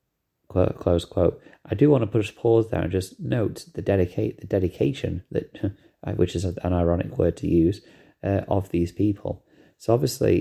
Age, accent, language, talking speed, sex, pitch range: 30-49, British, English, 180 wpm, male, 90-110 Hz